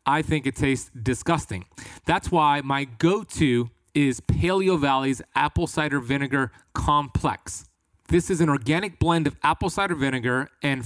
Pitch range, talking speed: 125-165 Hz, 145 wpm